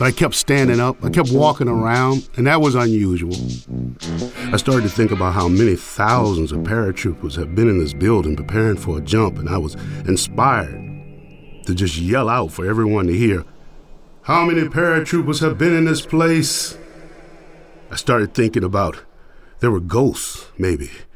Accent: American